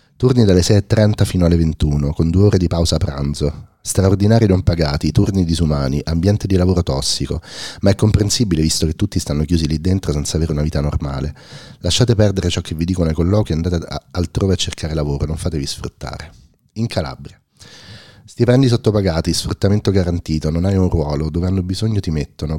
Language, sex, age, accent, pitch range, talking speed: Italian, male, 30-49, native, 80-100 Hz, 185 wpm